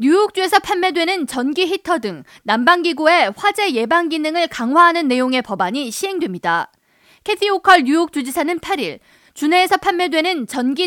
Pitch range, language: 255-350 Hz, Korean